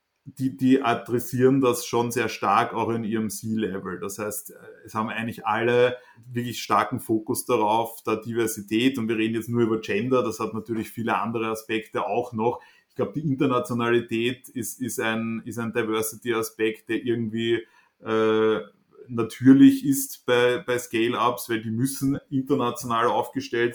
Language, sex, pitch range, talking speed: German, male, 115-125 Hz, 155 wpm